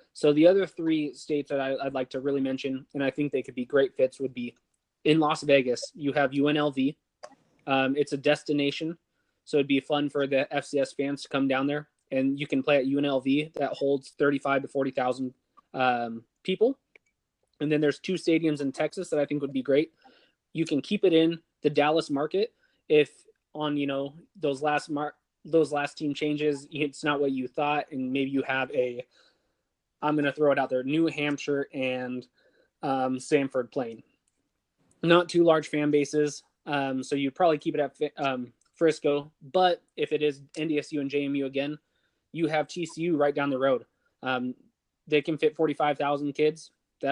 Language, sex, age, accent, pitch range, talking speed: English, male, 20-39, American, 135-155 Hz, 190 wpm